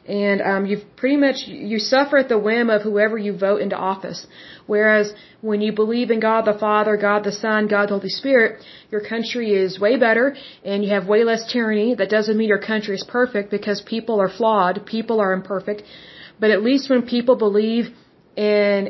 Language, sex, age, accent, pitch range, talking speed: Russian, female, 30-49, American, 200-225 Hz, 200 wpm